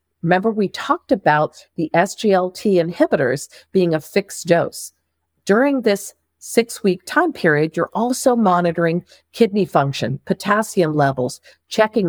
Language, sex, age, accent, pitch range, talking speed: English, female, 50-69, American, 145-195 Hz, 120 wpm